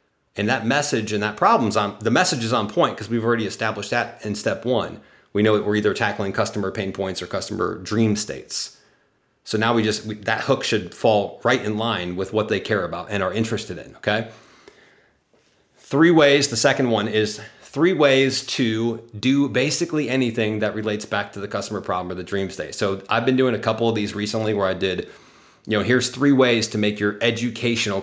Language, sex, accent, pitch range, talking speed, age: English, male, American, 105-130 Hz, 210 wpm, 30-49